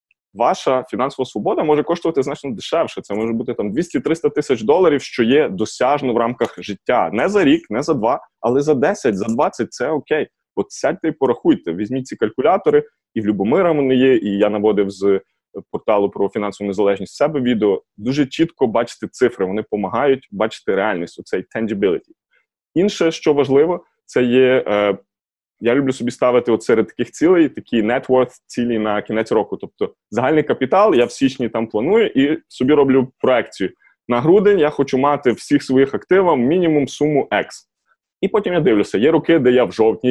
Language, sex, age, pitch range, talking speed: Ukrainian, male, 20-39, 110-150 Hz, 175 wpm